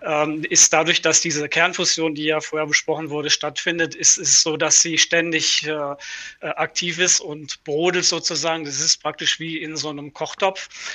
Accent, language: German, German